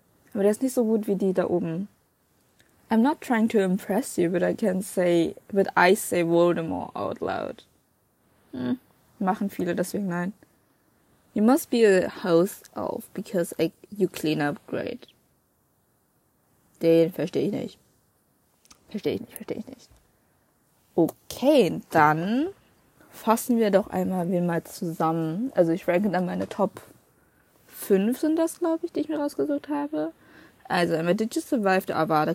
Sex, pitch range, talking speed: female, 175-225 Hz, 155 wpm